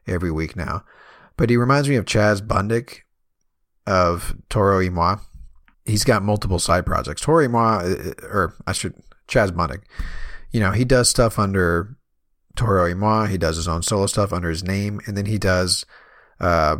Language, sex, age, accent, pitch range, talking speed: English, male, 40-59, American, 85-115 Hz, 175 wpm